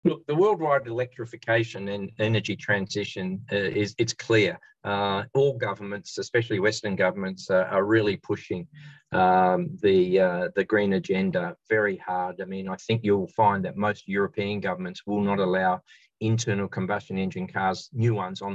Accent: Australian